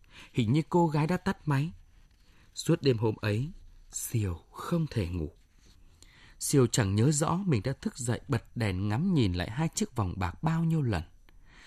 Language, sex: Vietnamese, male